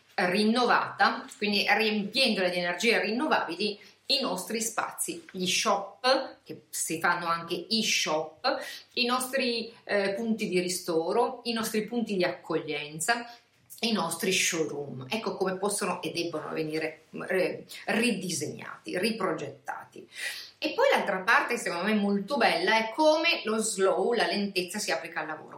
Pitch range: 175-230 Hz